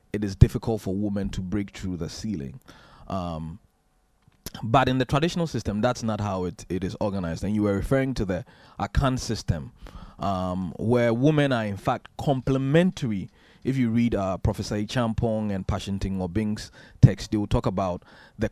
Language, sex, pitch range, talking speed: English, male, 100-125 Hz, 175 wpm